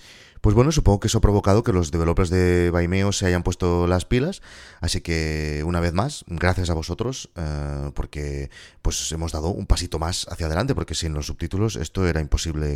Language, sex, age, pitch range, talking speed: Spanish, male, 30-49, 85-115 Hz, 200 wpm